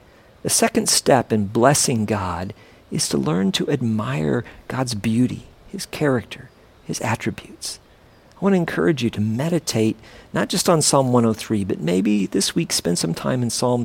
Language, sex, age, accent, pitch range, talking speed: English, male, 50-69, American, 105-140 Hz, 165 wpm